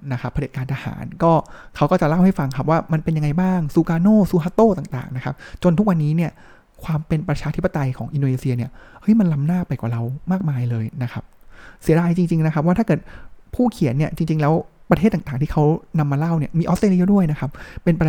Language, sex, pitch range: Thai, male, 140-180 Hz